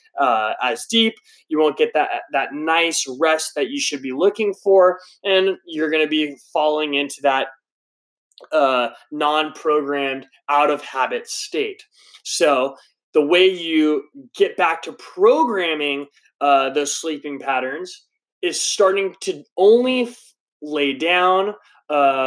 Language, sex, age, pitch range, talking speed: English, male, 20-39, 145-210 Hz, 125 wpm